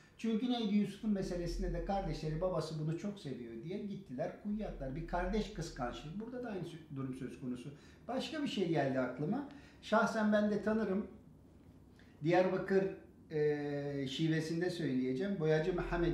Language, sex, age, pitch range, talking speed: Turkish, male, 50-69, 135-190 Hz, 135 wpm